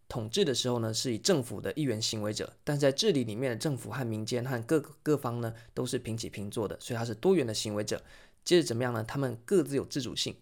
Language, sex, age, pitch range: Chinese, male, 20-39, 110-145 Hz